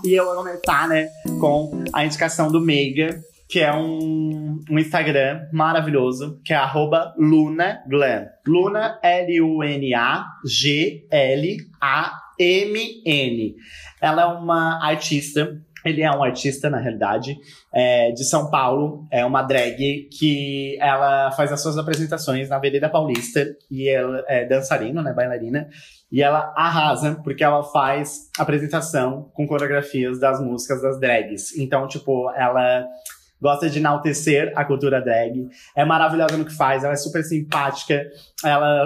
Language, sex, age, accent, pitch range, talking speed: Portuguese, male, 20-39, Brazilian, 140-160 Hz, 135 wpm